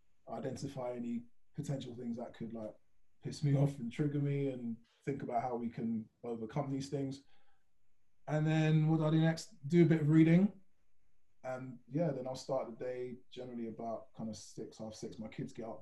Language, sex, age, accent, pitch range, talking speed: English, male, 20-39, British, 110-140 Hz, 195 wpm